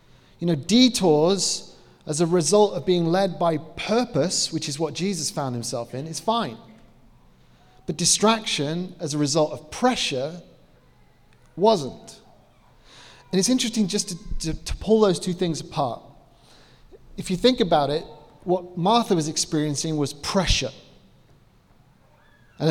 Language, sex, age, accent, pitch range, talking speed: English, male, 30-49, British, 150-195 Hz, 135 wpm